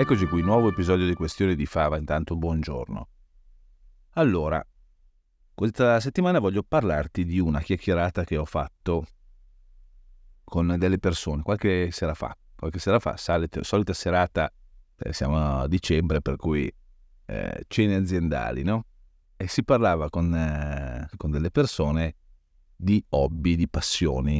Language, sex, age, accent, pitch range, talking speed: Italian, male, 30-49, native, 75-95 Hz, 130 wpm